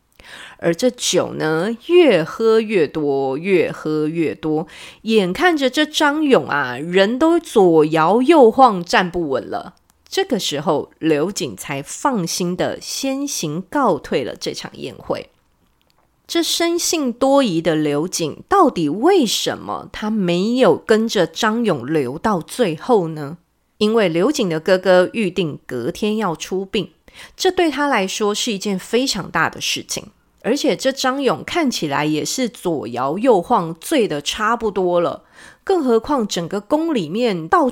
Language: Chinese